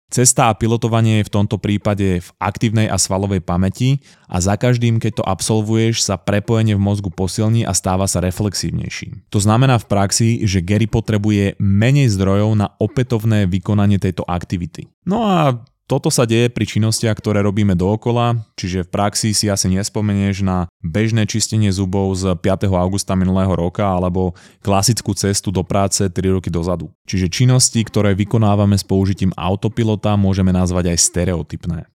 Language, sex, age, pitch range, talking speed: Slovak, male, 20-39, 95-110 Hz, 160 wpm